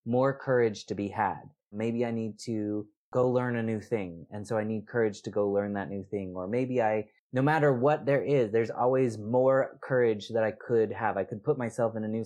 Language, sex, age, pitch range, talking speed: English, male, 20-39, 105-125 Hz, 235 wpm